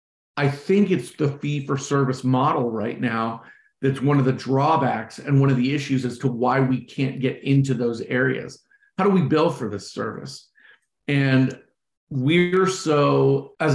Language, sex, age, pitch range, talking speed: English, male, 40-59, 130-150 Hz, 165 wpm